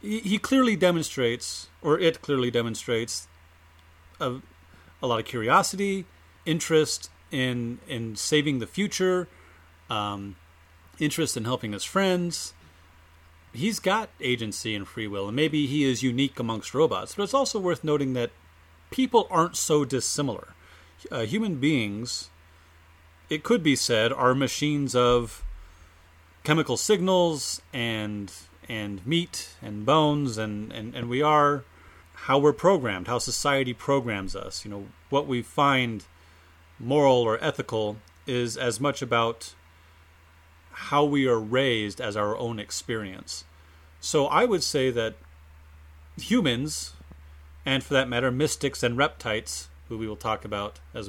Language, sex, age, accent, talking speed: English, male, 30-49, American, 135 wpm